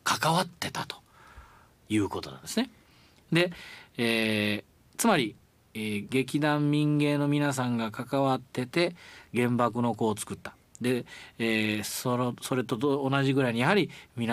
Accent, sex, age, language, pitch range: native, male, 40-59, Japanese, 100-140 Hz